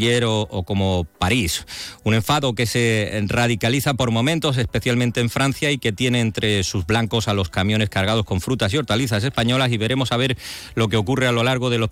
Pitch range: 100-130 Hz